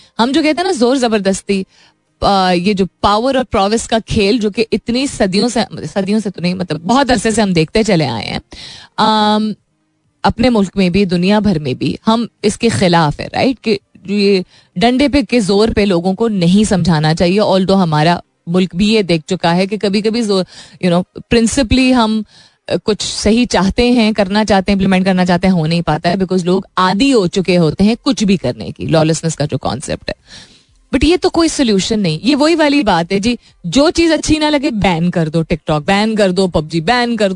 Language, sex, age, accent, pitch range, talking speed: Hindi, female, 30-49, native, 180-245 Hz, 210 wpm